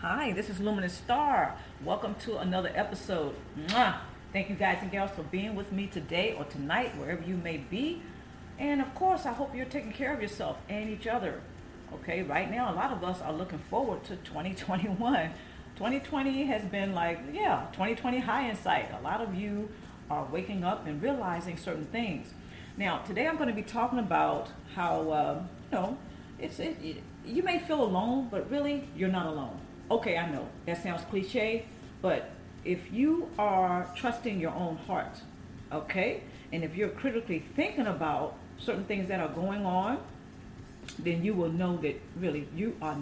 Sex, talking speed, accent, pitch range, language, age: female, 180 wpm, American, 170-240 Hz, English, 40-59